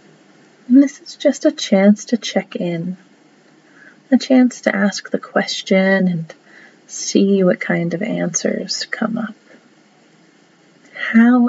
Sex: female